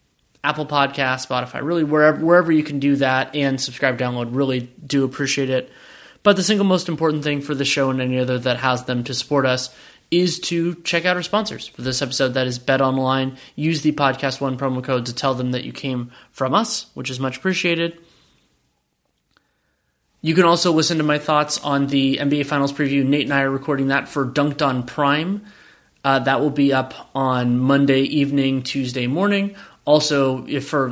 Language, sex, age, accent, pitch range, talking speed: English, male, 20-39, American, 130-150 Hz, 195 wpm